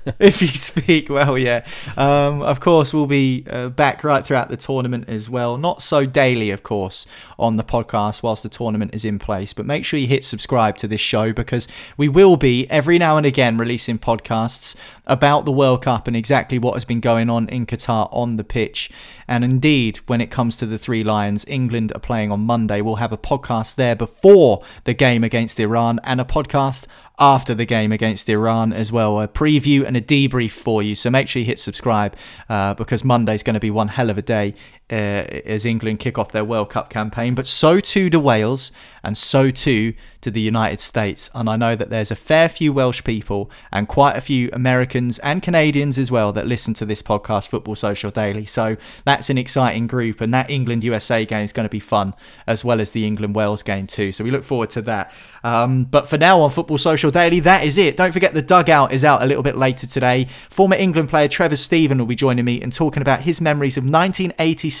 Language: English